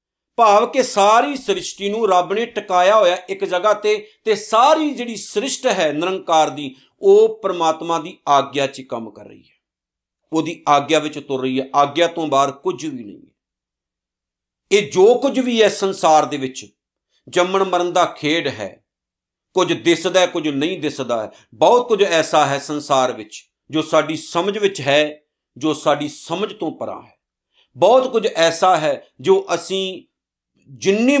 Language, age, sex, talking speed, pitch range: Punjabi, 50-69, male, 140 wpm, 145-220 Hz